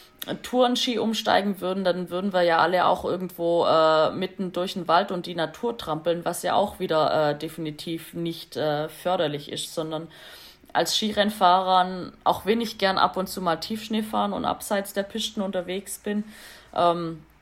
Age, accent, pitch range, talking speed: 20-39, German, 160-190 Hz, 165 wpm